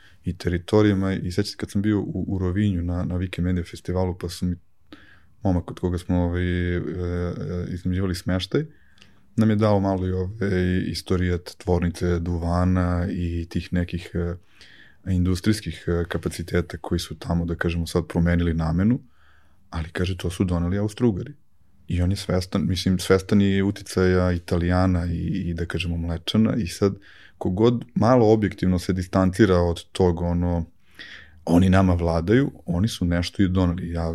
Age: 20-39